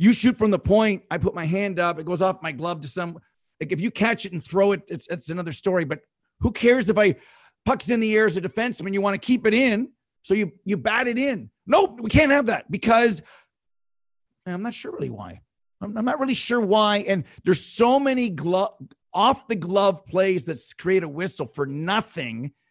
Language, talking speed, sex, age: English, 220 wpm, male, 40-59